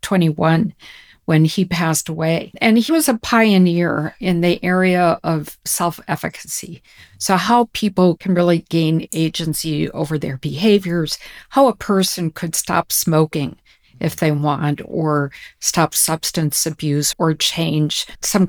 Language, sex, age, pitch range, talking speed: English, female, 50-69, 155-195 Hz, 135 wpm